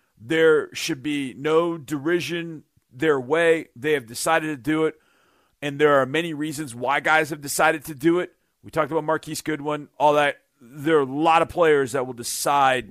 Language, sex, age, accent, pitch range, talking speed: English, male, 40-59, American, 135-165 Hz, 190 wpm